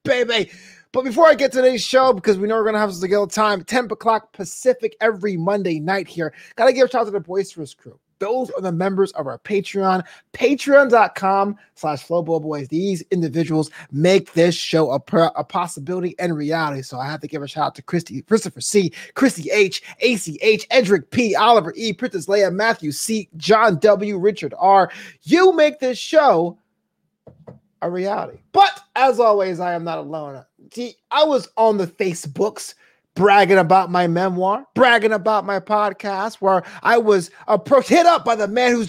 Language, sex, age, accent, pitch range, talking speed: English, male, 20-39, American, 180-245 Hz, 185 wpm